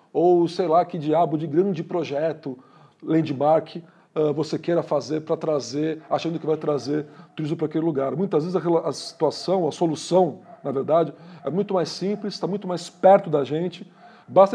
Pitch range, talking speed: 155-195 Hz, 170 wpm